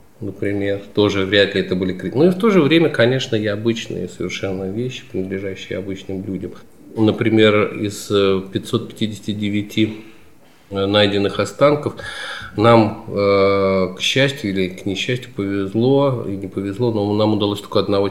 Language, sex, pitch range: Russian, male, 95-115 Hz